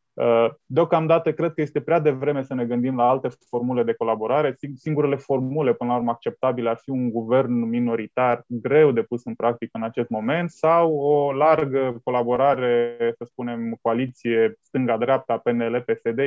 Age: 20-39